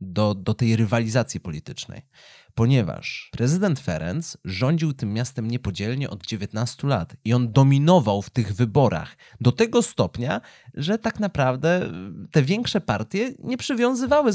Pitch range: 115-170 Hz